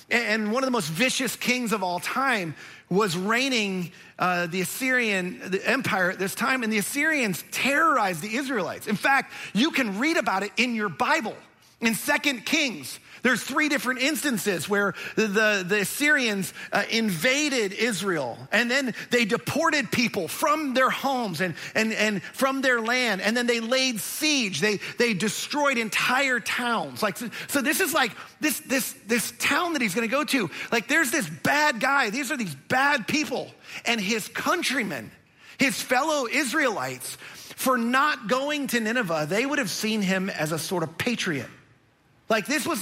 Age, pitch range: 40-59, 210-275 Hz